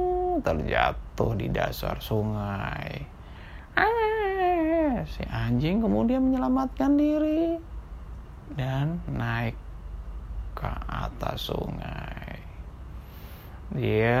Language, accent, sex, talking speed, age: Indonesian, native, male, 70 wpm, 20-39